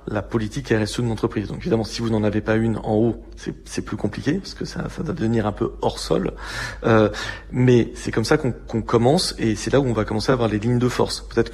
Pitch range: 110-130 Hz